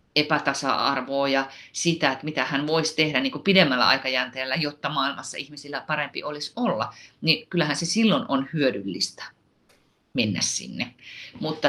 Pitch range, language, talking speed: 150-200 Hz, Finnish, 135 wpm